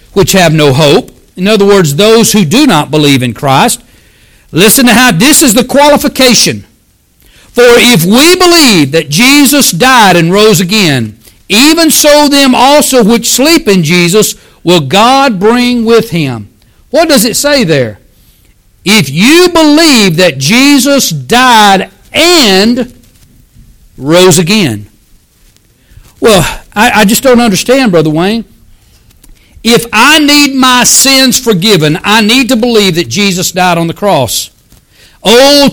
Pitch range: 180-255 Hz